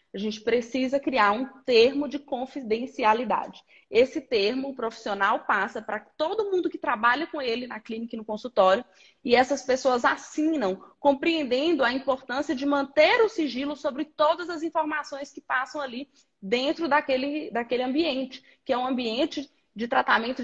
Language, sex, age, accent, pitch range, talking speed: Portuguese, female, 20-39, Brazilian, 225-300 Hz, 155 wpm